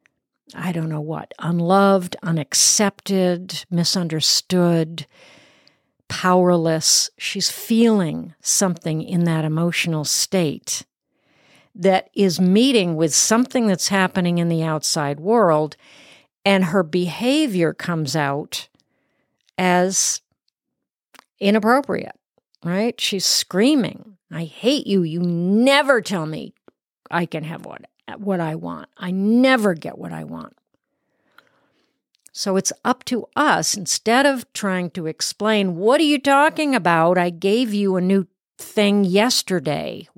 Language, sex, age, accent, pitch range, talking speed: English, female, 50-69, American, 170-225 Hz, 115 wpm